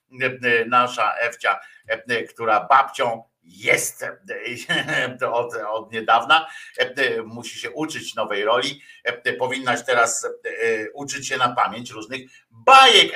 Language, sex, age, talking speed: Polish, male, 50-69, 90 wpm